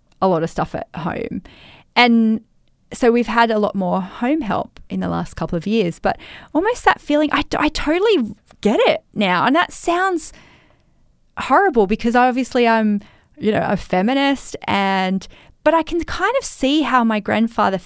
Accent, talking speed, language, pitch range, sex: Australian, 170 wpm, English, 205-290 Hz, female